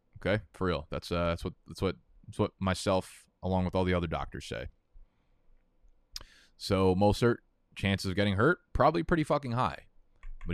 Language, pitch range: English, 95-125 Hz